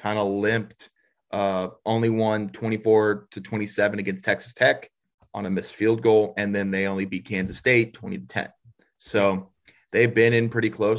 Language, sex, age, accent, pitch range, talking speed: English, male, 30-49, American, 100-115 Hz, 190 wpm